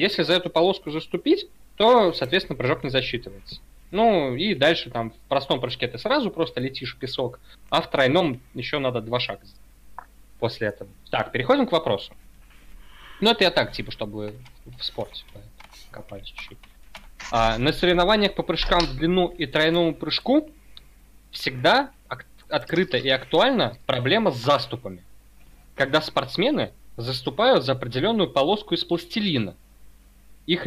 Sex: male